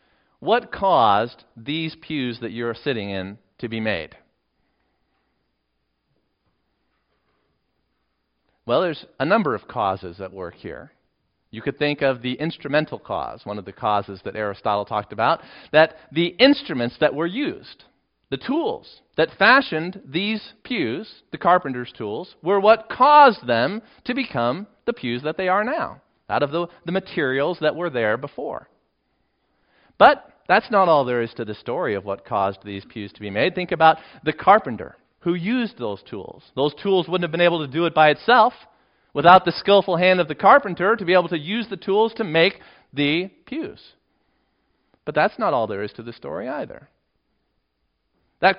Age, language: 40-59, English